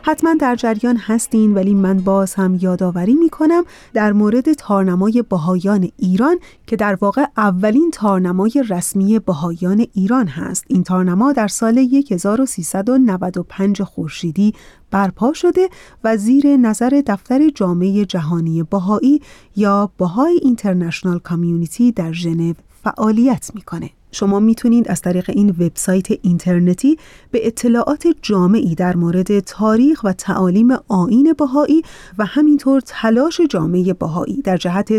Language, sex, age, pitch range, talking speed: Persian, female, 30-49, 185-245 Hz, 120 wpm